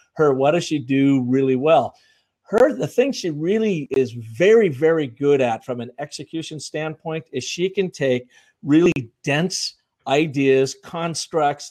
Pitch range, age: 130-165 Hz, 50-69